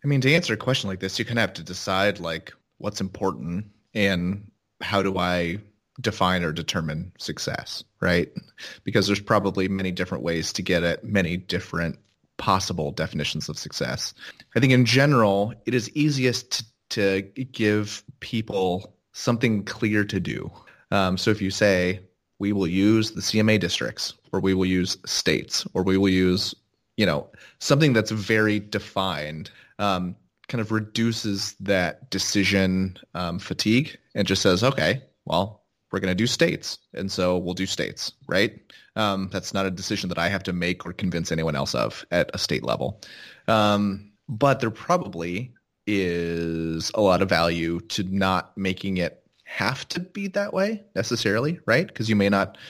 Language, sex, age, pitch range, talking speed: English, male, 30-49, 90-110 Hz, 170 wpm